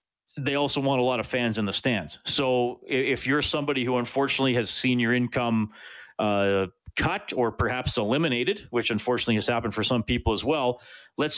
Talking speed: 185 wpm